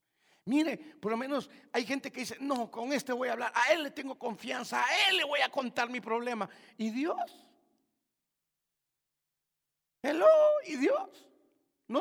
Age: 50-69